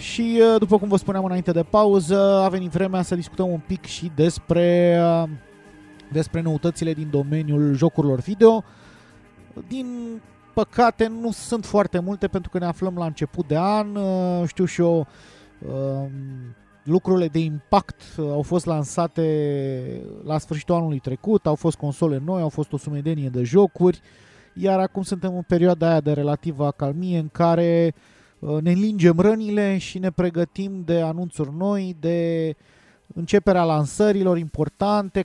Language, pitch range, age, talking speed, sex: Romanian, 150-190 Hz, 30-49, 145 wpm, male